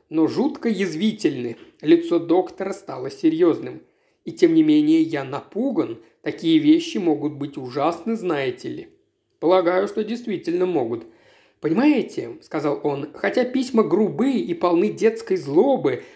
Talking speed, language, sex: 125 wpm, Russian, male